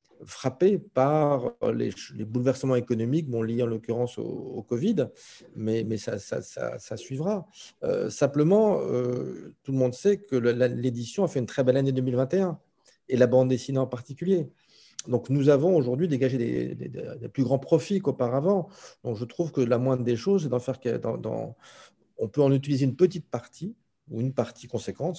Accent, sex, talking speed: French, male, 180 wpm